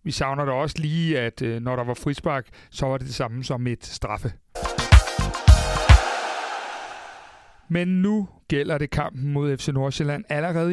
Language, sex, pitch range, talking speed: Danish, male, 135-175 Hz, 150 wpm